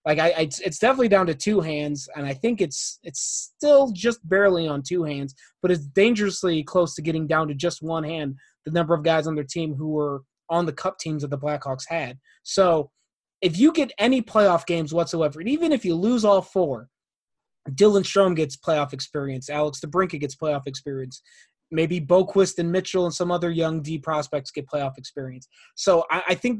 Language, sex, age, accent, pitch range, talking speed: English, male, 20-39, American, 145-180 Hz, 205 wpm